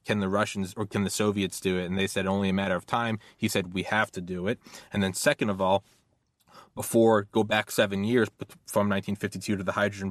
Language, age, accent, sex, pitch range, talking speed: English, 20-39, American, male, 95-105 Hz, 230 wpm